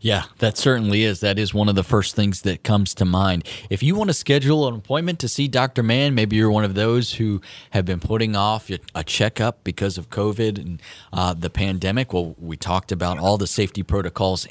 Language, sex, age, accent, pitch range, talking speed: English, male, 20-39, American, 95-125 Hz, 220 wpm